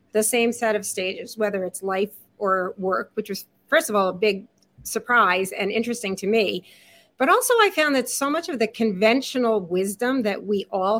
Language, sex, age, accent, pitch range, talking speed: English, female, 40-59, American, 205-255 Hz, 195 wpm